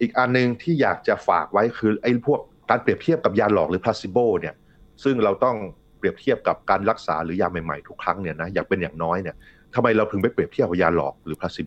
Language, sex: Thai, male